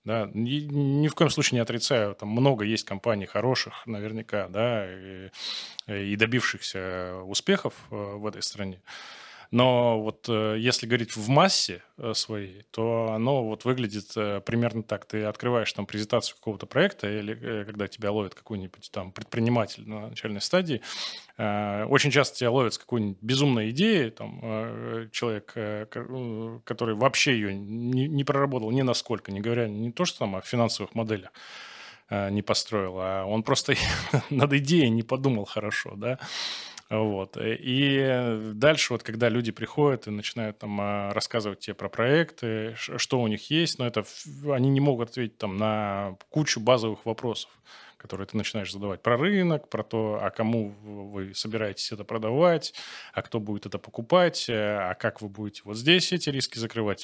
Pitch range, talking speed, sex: 105-125 Hz, 155 wpm, male